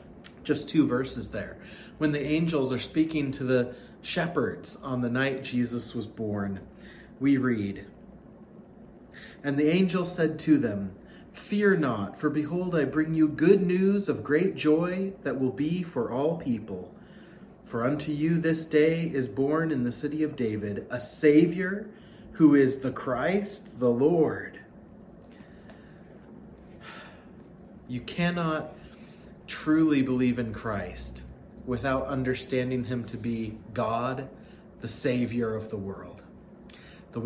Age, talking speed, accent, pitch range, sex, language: 30-49, 130 wpm, American, 120-155 Hz, male, English